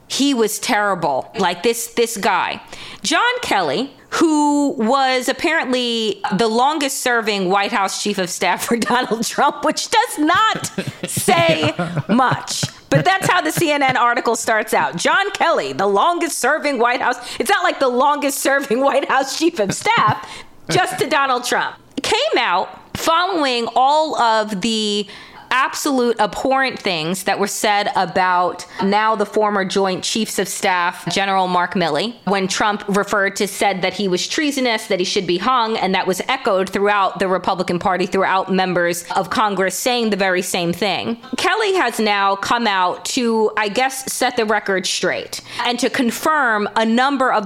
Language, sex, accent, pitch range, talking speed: English, female, American, 195-265 Hz, 165 wpm